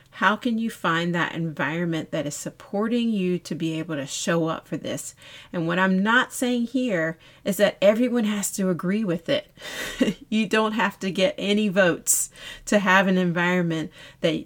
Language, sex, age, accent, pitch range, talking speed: English, female, 40-59, American, 160-215 Hz, 185 wpm